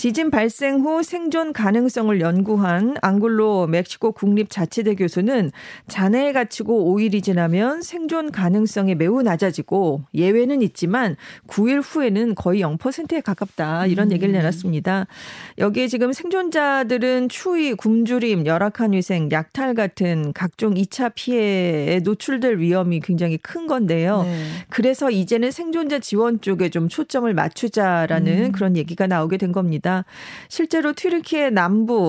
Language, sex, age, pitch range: Korean, female, 40-59, 180-255 Hz